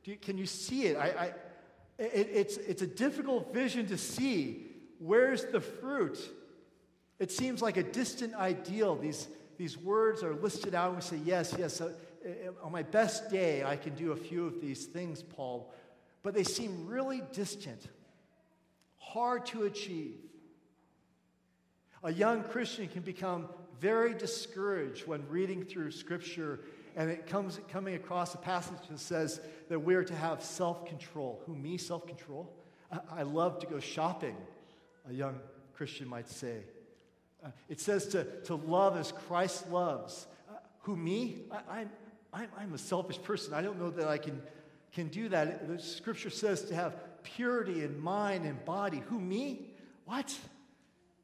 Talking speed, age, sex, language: 165 wpm, 50-69, male, English